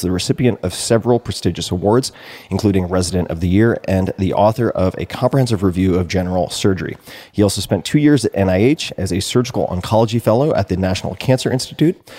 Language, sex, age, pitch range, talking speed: English, male, 30-49, 90-115 Hz, 185 wpm